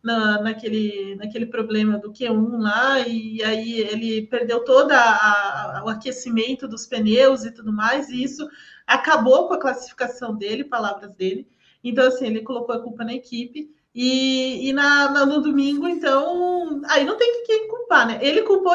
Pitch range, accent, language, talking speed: 235-310 Hz, Brazilian, Portuguese, 155 wpm